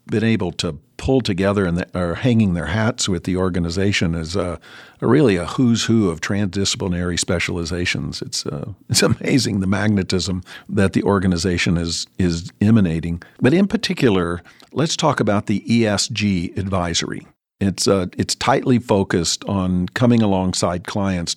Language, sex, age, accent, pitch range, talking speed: English, male, 50-69, American, 90-105 Hz, 150 wpm